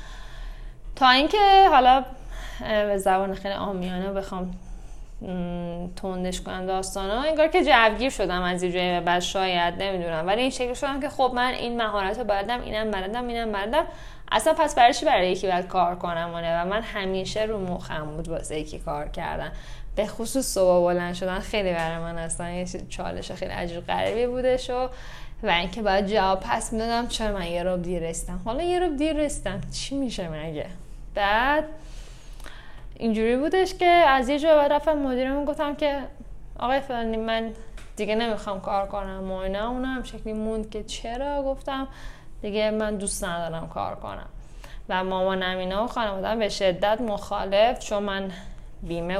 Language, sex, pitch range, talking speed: Persian, female, 180-240 Hz, 155 wpm